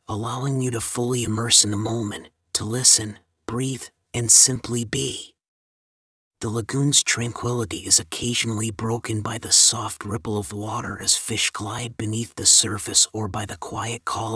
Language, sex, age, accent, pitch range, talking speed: English, male, 30-49, American, 105-120 Hz, 155 wpm